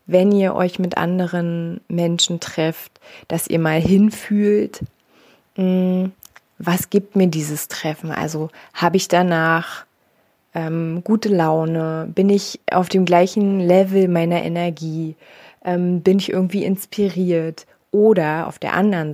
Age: 20-39